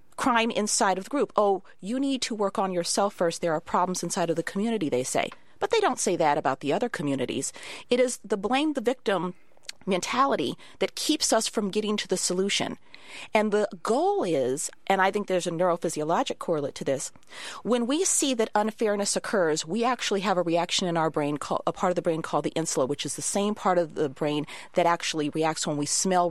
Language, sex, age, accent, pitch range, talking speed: English, female, 40-59, American, 165-225 Hz, 215 wpm